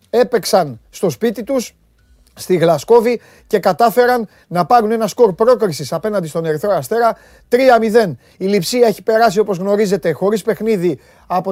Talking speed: 140 wpm